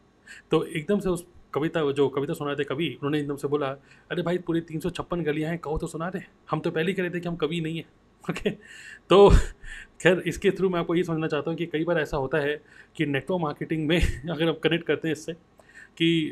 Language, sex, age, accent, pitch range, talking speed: Hindi, male, 30-49, native, 145-170 Hz, 245 wpm